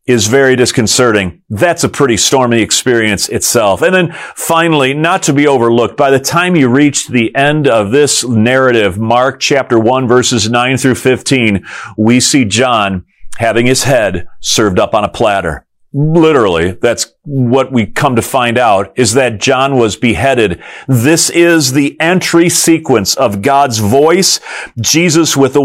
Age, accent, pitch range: 40-59, American, 105-145 Hz